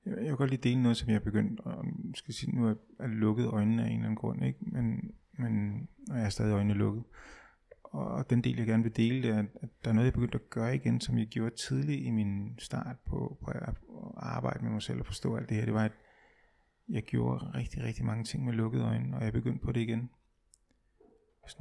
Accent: native